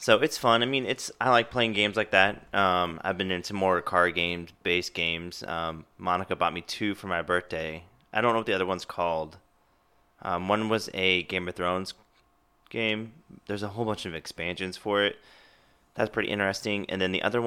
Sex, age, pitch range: male, 20-39, 85-95 Hz